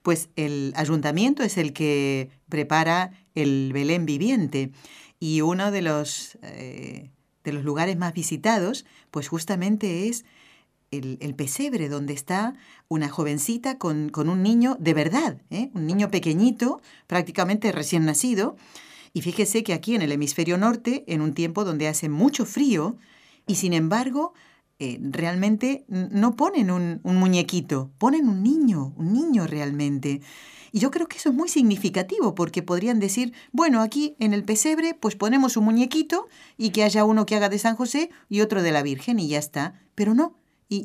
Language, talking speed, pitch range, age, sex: Spanish, 165 wpm, 160-240 Hz, 40-59, female